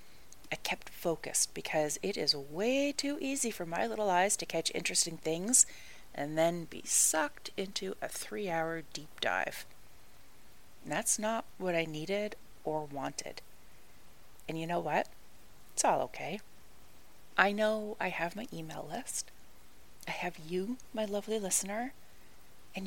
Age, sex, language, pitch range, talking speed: 30-49, female, English, 160-210 Hz, 145 wpm